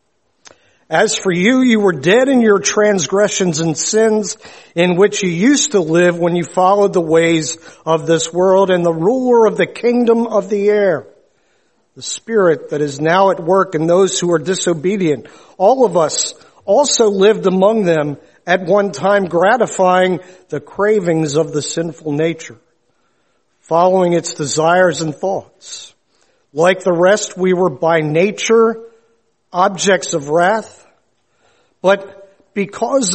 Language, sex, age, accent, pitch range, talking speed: English, male, 50-69, American, 170-215 Hz, 145 wpm